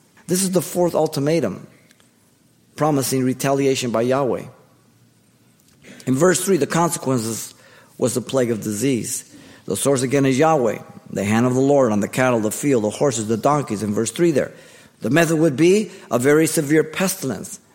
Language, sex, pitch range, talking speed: English, male, 125-170 Hz, 170 wpm